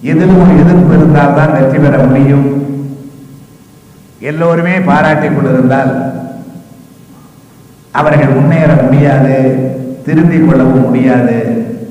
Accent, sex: native, male